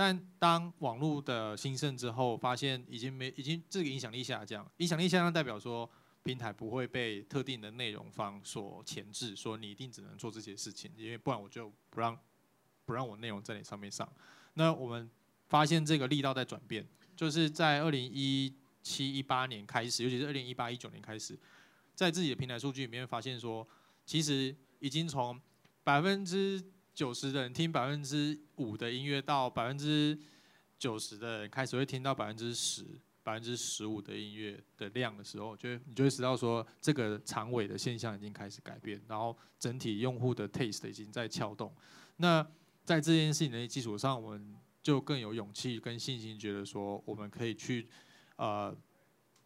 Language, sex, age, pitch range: Chinese, male, 20-39, 110-145 Hz